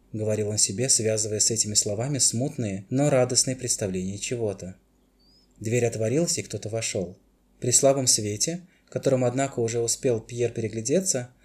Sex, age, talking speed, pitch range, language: male, 20-39, 135 wpm, 105-130 Hz, Russian